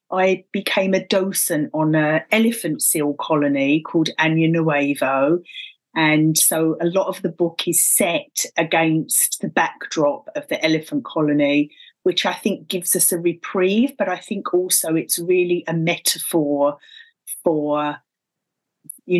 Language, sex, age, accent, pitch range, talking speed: English, female, 30-49, British, 155-180 Hz, 140 wpm